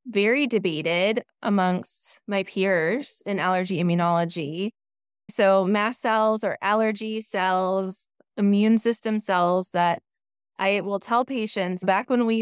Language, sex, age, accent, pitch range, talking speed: English, female, 20-39, American, 185-225 Hz, 120 wpm